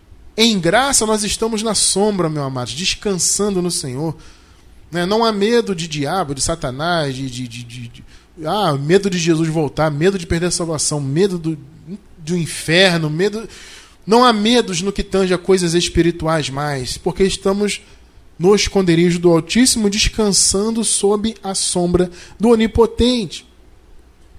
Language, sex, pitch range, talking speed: Portuguese, male, 135-205 Hz, 150 wpm